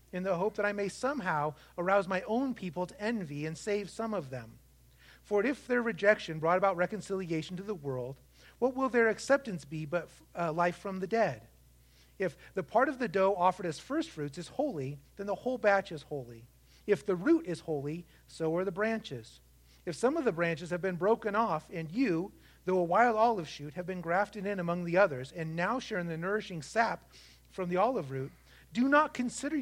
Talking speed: 205 wpm